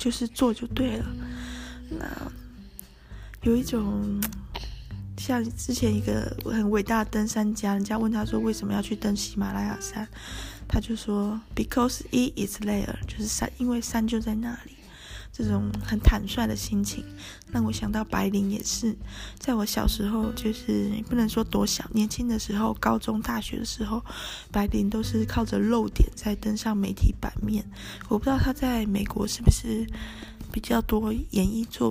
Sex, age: female, 20-39